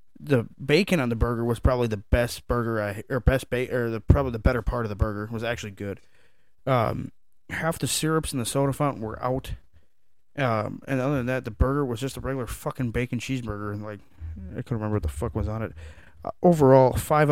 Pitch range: 105-130 Hz